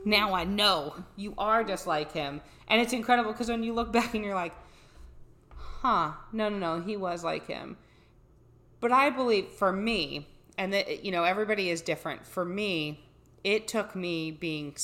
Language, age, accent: English, 30-49, American